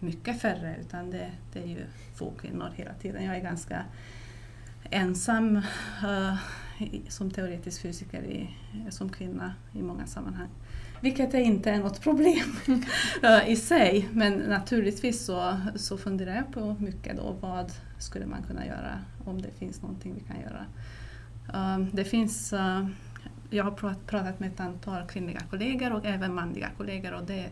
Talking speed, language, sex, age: 160 wpm, Swedish, female, 30-49